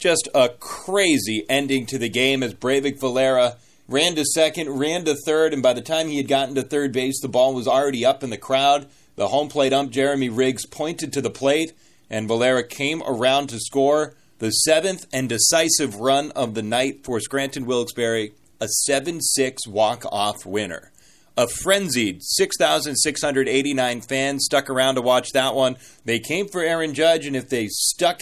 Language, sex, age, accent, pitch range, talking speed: English, male, 30-49, American, 120-155 Hz, 180 wpm